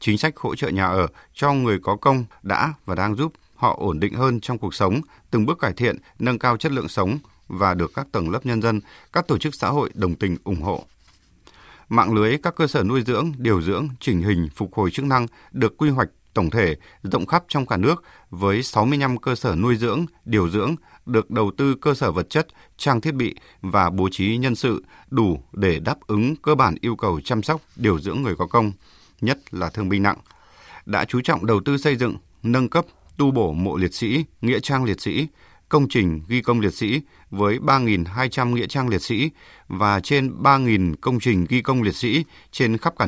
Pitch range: 100-140 Hz